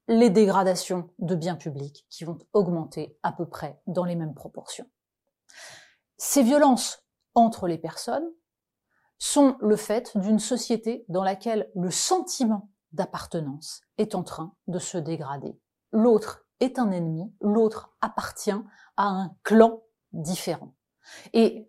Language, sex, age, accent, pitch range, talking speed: French, female, 30-49, French, 180-255 Hz, 130 wpm